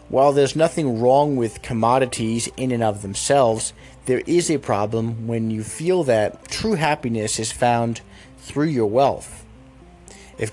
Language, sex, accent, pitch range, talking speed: English, male, American, 110-135 Hz, 150 wpm